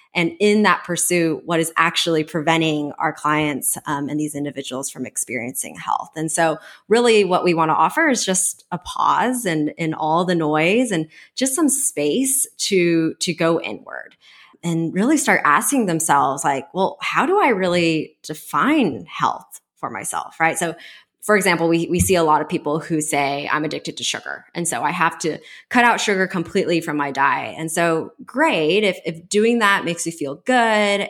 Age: 20-39